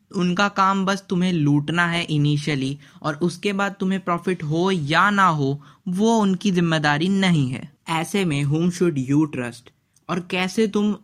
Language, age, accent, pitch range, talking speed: Hindi, 20-39, native, 150-190 Hz, 165 wpm